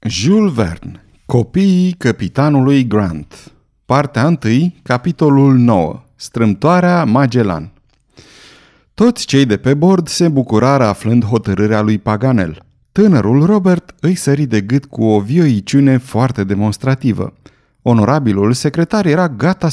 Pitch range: 105-145 Hz